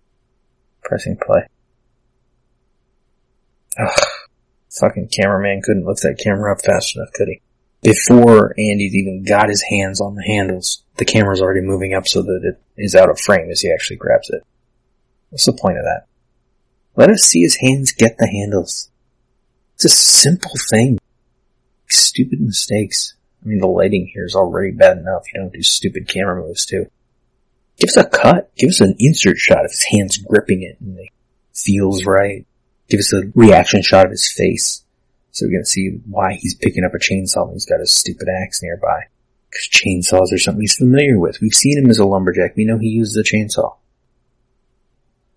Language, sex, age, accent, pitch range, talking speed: English, male, 30-49, American, 95-120 Hz, 185 wpm